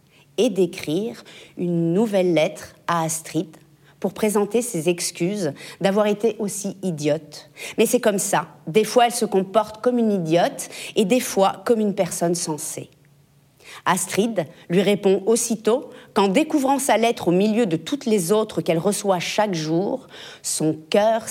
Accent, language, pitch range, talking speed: French, French, 165-215 Hz, 150 wpm